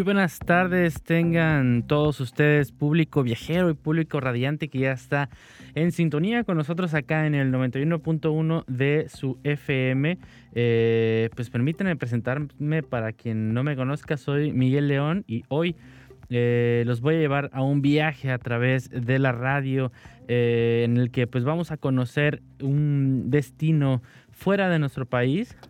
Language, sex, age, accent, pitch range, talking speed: English, male, 20-39, Mexican, 125-155 Hz, 150 wpm